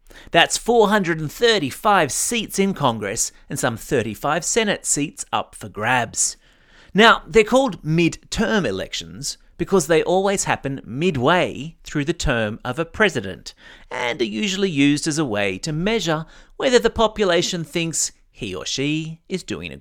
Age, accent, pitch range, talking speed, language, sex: 30-49, Australian, 130-200 Hz, 145 wpm, English, male